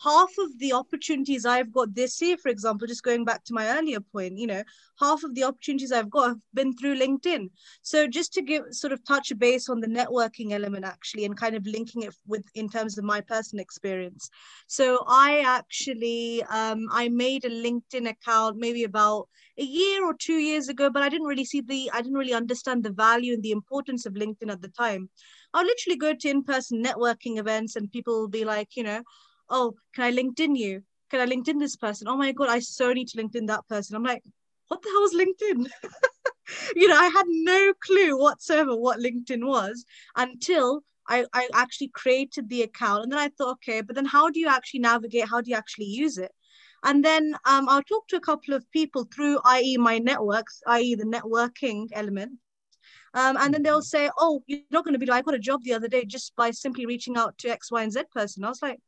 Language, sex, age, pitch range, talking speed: English, female, 20-39, 230-285 Hz, 220 wpm